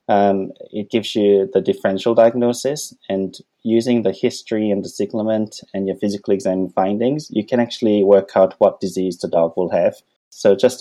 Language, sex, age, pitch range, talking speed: English, male, 20-39, 95-120 Hz, 180 wpm